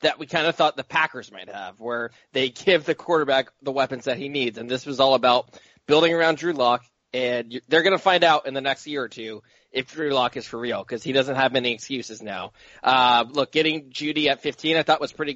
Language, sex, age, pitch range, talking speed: English, male, 20-39, 125-160 Hz, 245 wpm